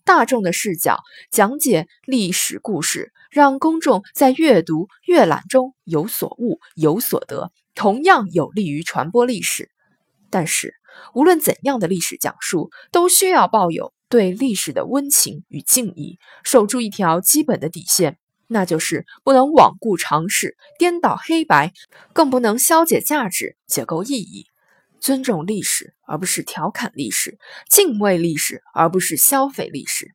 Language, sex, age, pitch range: Chinese, female, 20-39, 180-270 Hz